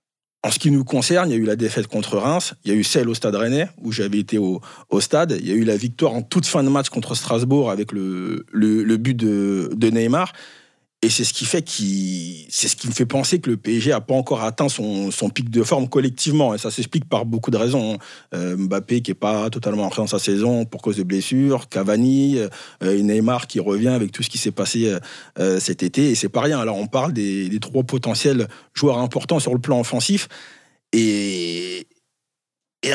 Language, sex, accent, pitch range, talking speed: French, male, French, 105-135 Hz, 230 wpm